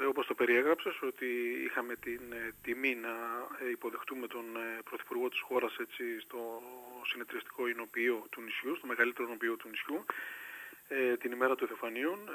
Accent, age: native, 30-49